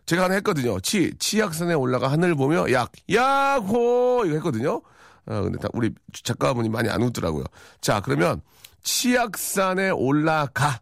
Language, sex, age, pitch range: Korean, male, 40-59, 125-195 Hz